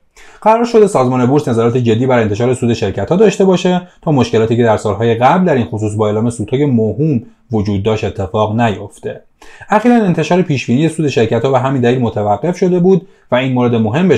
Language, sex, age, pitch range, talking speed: Persian, male, 30-49, 110-170 Hz, 190 wpm